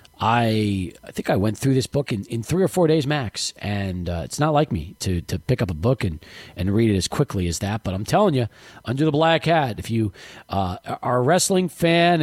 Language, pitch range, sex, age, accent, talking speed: English, 110-175 Hz, male, 40-59, American, 245 wpm